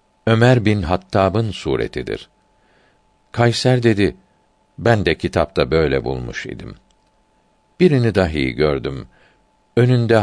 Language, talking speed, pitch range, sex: Turkish, 95 wpm, 80-110 Hz, male